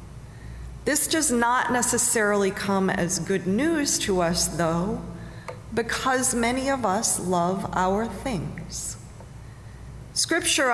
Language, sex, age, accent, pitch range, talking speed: English, female, 40-59, American, 180-235 Hz, 105 wpm